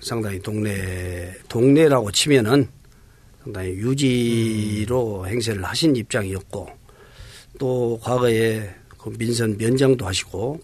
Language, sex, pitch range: Korean, male, 105-135 Hz